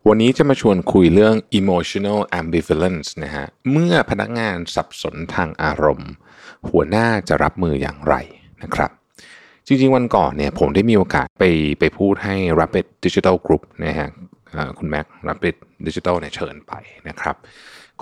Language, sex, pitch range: Thai, male, 75-110 Hz